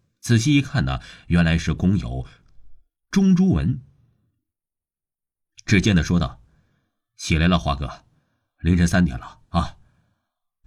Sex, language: male, Chinese